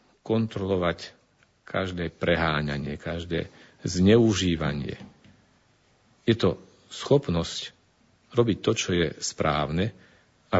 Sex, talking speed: male, 80 wpm